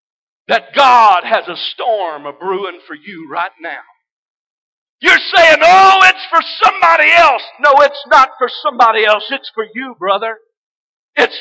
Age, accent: 50-69, American